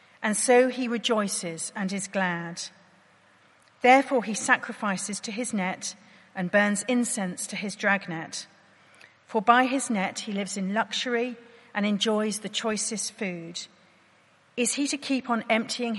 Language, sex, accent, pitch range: English, female, British, 190-235 Hz